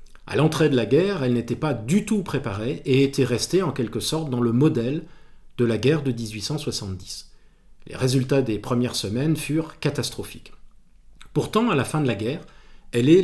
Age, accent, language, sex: 40-59, French, French, male